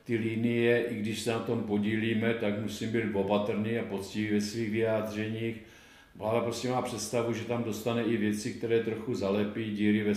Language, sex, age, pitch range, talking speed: Czech, male, 50-69, 100-115 Hz, 185 wpm